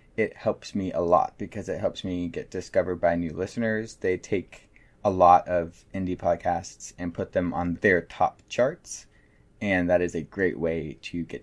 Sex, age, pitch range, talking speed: male, 20-39, 85-100 Hz, 190 wpm